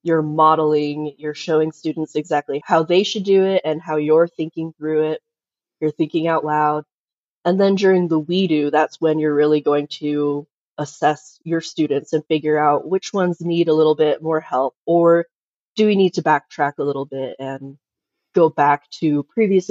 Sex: female